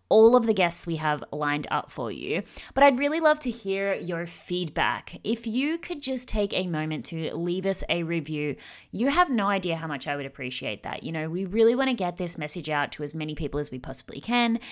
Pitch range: 155-245 Hz